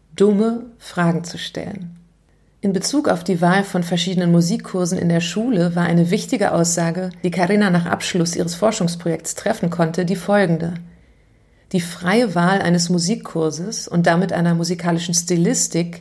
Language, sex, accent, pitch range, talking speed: German, female, German, 170-200 Hz, 145 wpm